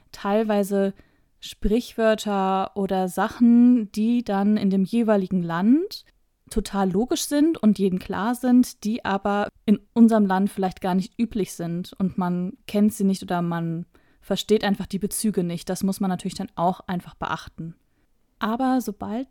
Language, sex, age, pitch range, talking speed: German, female, 20-39, 185-220 Hz, 150 wpm